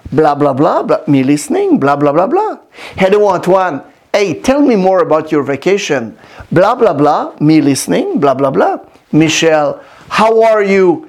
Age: 50-69